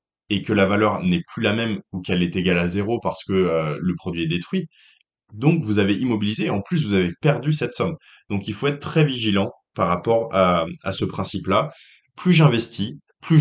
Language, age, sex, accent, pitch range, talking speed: French, 20-39, male, French, 95-140 Hz, 210 wpm